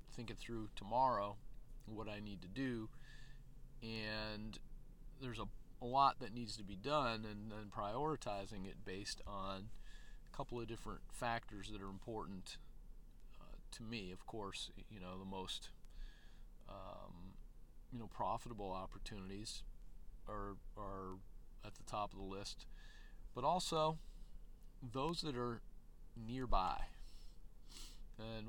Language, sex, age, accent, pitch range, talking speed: English, male, 40-59, American, 105-135 Hz, 130 wpm